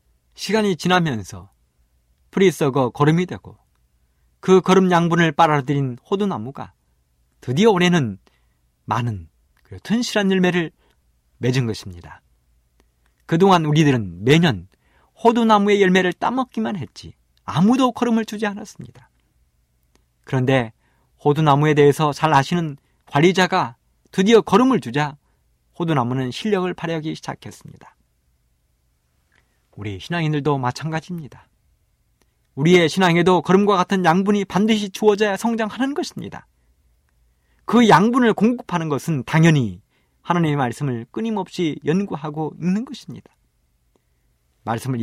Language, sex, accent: Korean, male, native